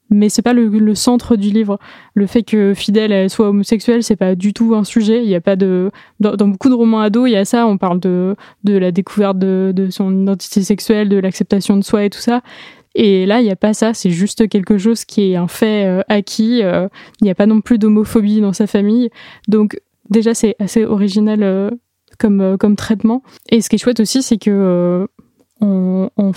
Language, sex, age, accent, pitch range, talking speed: French, female, 20-39, French, 195-220 Hz, 220 wpm